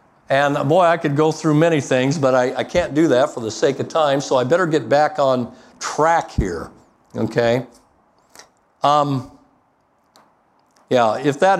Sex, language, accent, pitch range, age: male, Japanese, American, 130-165 Hz, 50-69